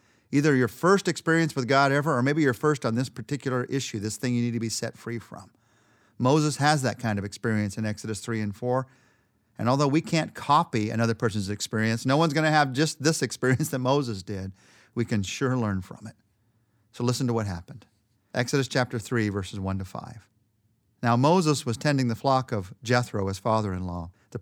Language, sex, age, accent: English, male, 40-59, American